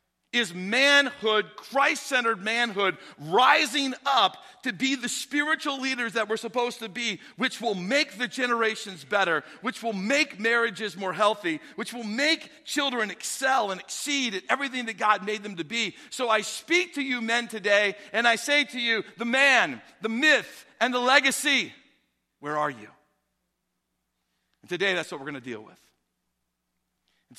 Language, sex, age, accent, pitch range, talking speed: English, male, 50-69, American, 150-250 Hz, 165 wpm